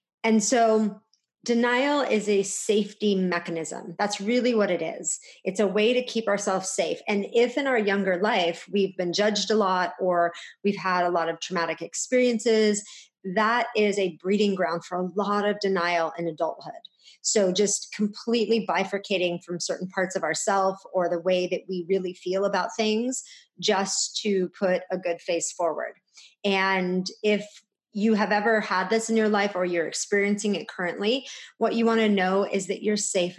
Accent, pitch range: American, 180-215 Hz